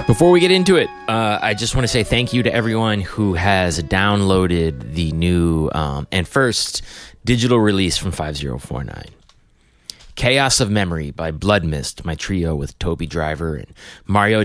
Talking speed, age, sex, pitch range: 165 wpm, 30-49, male, 85-115 Hz